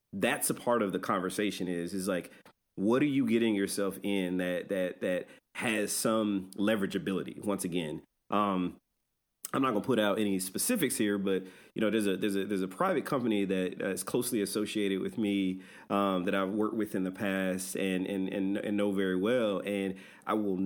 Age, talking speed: 30-49, 195 wpm